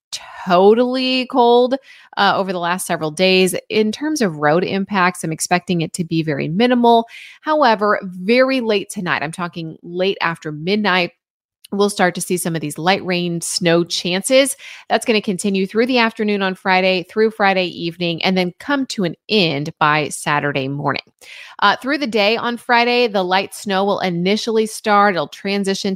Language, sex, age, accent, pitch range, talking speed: English, female, 30-49, American, 165-220 Hz, 175 wpm